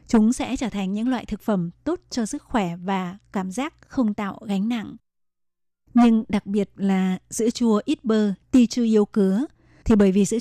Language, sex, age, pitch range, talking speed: Vietnamese, female, 20-39, 195-235 Hz, 200 wpm